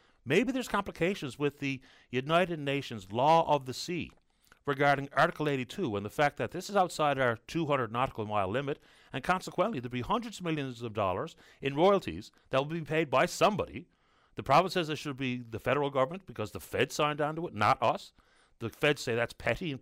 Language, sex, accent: English, male, American